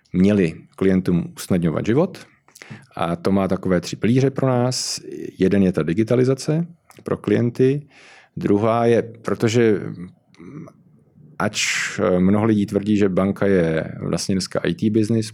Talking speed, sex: 125 wpm, male